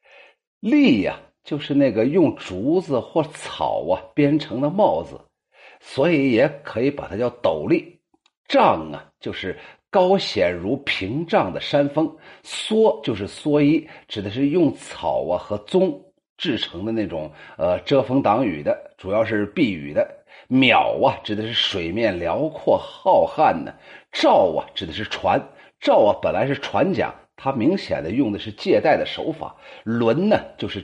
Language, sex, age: Chinese, male, 50-69